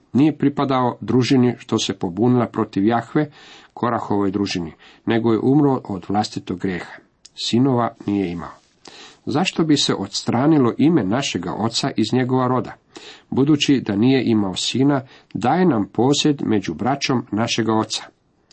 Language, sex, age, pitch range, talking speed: Croatian, male, 50-69, 105-140 Hz, 135 wpm